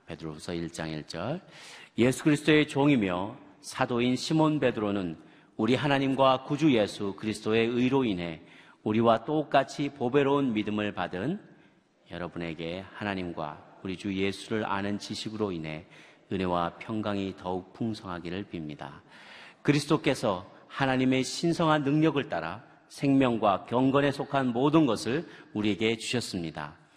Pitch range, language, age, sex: 90-130 Hz, Korean, 40-59, male